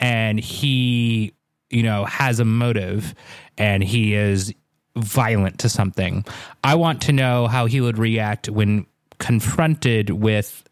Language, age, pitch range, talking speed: English, 30-49, 110-135 Hz, 135 wpm